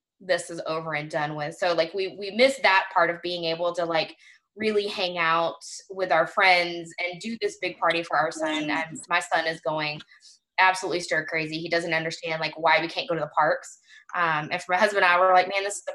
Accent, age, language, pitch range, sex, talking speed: American, 20-39, English, 165-190 Hz, female, 240 wpm